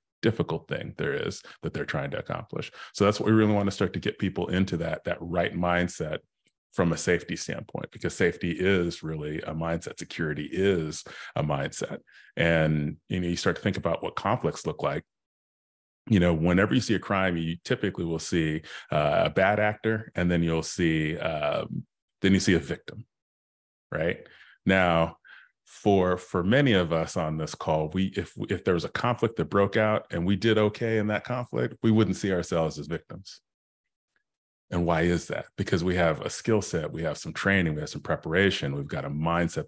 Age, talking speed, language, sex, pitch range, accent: 30-49, 200 wpm, English, male, 80-100 Hz, American